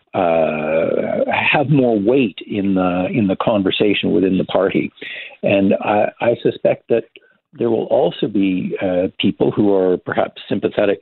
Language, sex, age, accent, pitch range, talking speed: English, male, 60-79, American, 95-125 Hz, 145 wpm